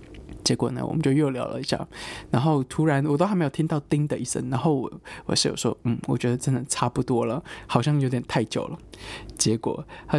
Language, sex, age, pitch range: Chinese, male, 20-39, 125-160 Hz